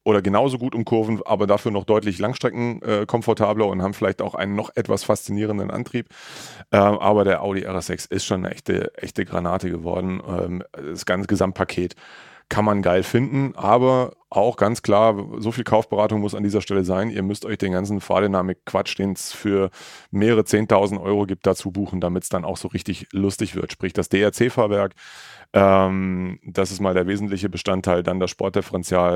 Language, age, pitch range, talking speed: German, 30-49, 95-105 Hz, 185 wpm